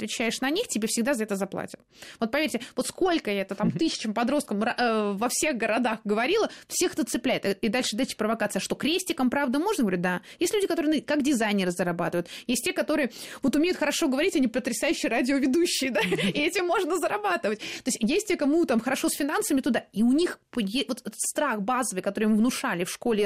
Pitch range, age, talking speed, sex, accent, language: 215-295 Hz, 20-39, 200 wpm, female, native, Russian